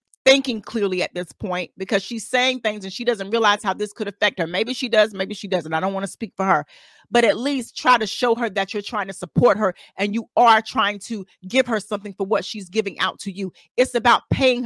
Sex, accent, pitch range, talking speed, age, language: female, American, 195-245 Hz, 255 wpm, 40-59, English